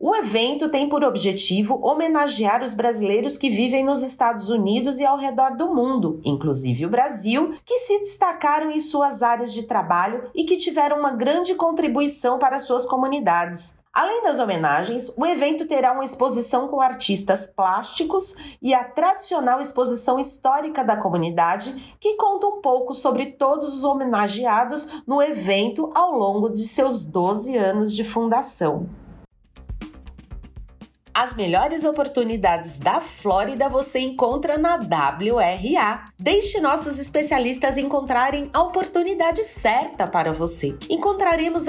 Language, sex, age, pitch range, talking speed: English, female, 40-59, 220-310 Hz, 135 wpm